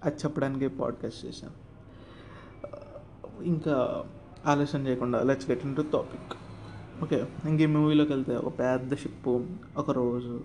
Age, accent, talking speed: 30-49, native, 115 wpm